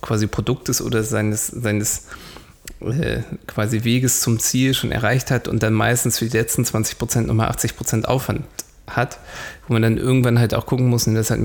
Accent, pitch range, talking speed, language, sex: German, 110-120 Hz, 195 wpm, German, male